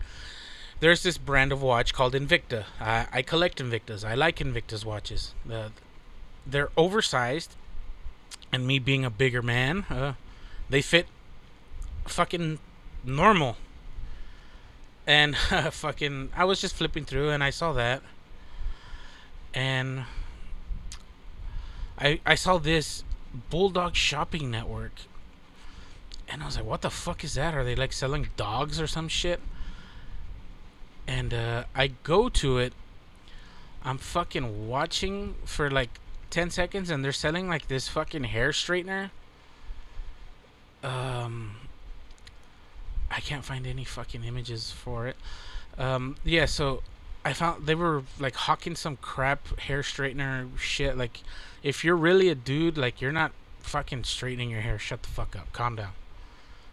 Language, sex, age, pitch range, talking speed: English, male, 30-49, 110-155 Hz, 135 wpm